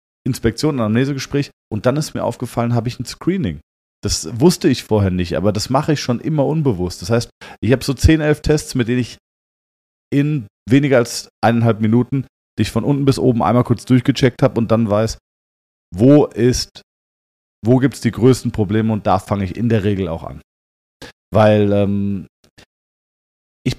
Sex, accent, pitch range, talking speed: male, German, 100-125 Hz, 180 wpm